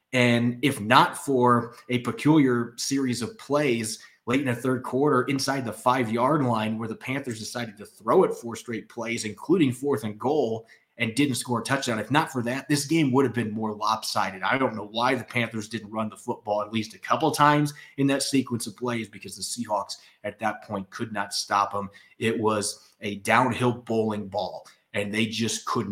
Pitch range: 110-130 Hz